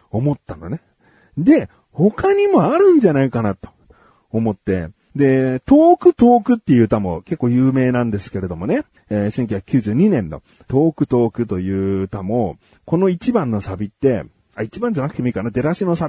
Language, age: Japanese, 40-59